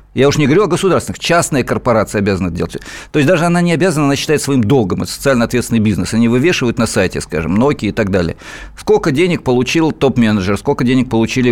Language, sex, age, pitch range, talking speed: Russian, male, 50-69, 110-140 Hz, 215 wpm